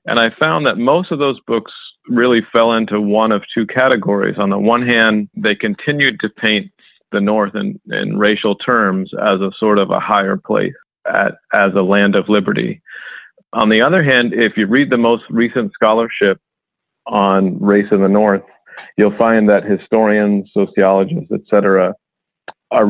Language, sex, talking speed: English, male, 170 wpm